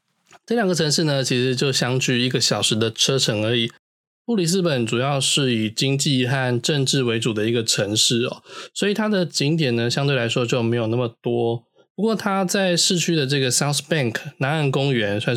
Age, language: 20-39, Chinese